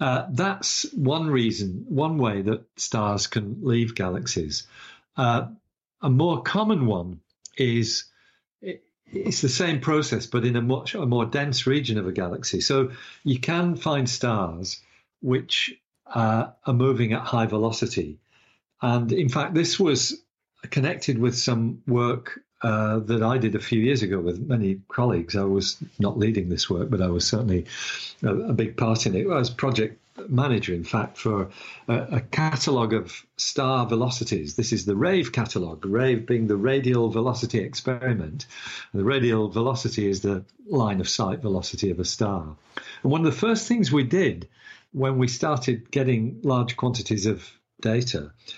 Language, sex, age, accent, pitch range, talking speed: English, male, 50-69, British, 110-135 Hz, 160 wpm